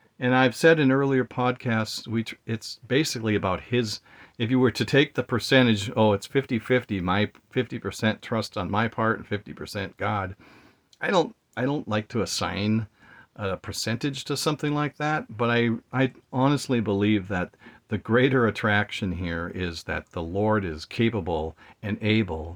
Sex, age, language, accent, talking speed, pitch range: male, 50-69, English, American, 165 wpm, 95-130 Hz